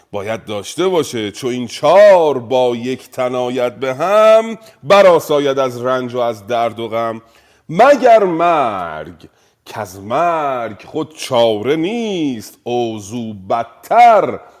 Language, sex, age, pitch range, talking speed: Persian, male, 40-59, 110-155 Hz, 120 wpm